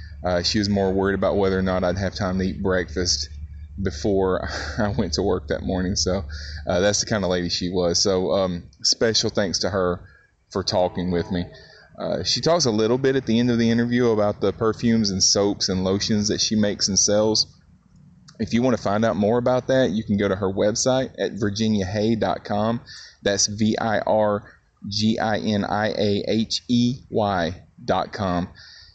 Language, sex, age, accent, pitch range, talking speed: English, male, 30-49, American, 95-115 Hz, 175 wpm